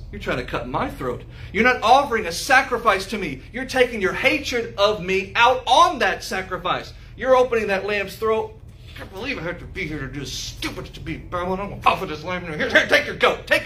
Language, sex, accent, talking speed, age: English, male, American, 235 wpm, 40-59